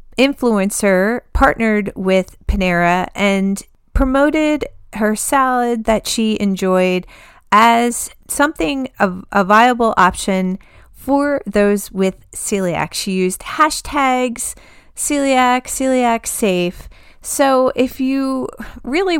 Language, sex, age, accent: English, female, 30-49, American